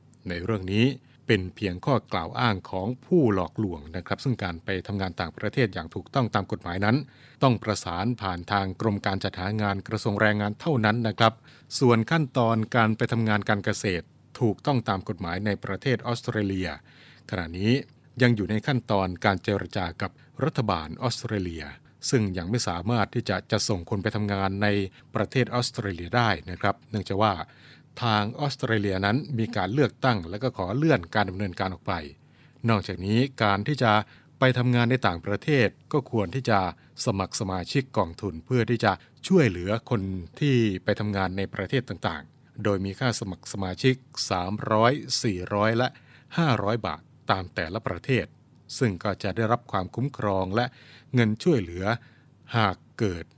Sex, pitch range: male, 100-125 Hz